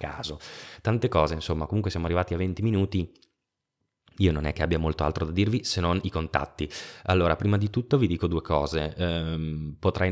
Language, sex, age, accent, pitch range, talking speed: Italian, male, 20-39, native, 80-90 Hz, 195 wpm